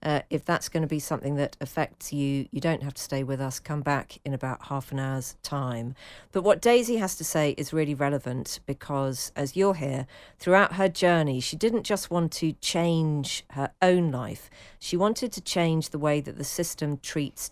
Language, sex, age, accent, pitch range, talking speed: English, female, 40-59, British, 135-170 Hz, 205 wpm